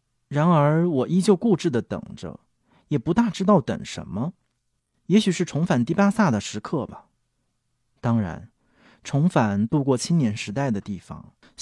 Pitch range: 120-180 Hz